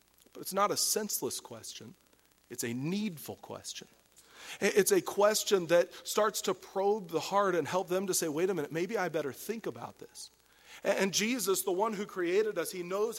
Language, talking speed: English, 185 wpm